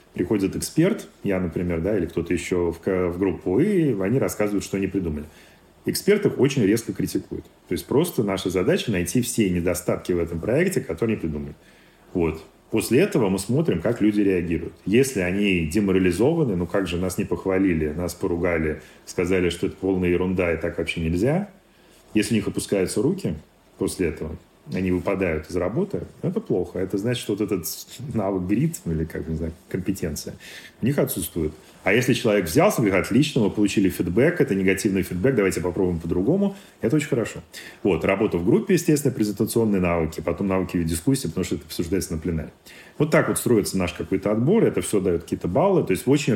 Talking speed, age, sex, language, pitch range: 185 wpm, 30-49, male, Russian, 85-105 Hz